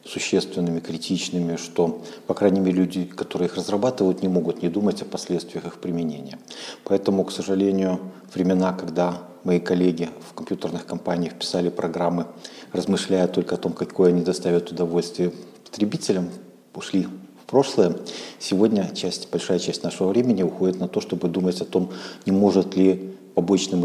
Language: Russian